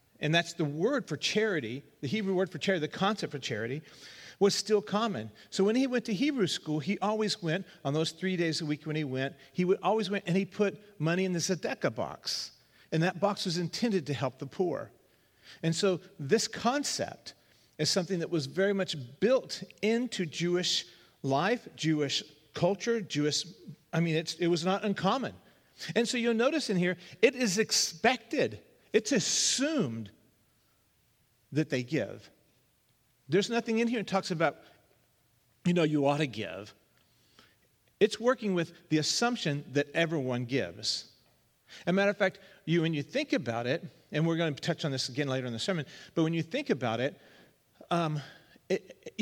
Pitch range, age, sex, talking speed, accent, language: 150-205 Hz, 40-59, male, 180 wpm, American, English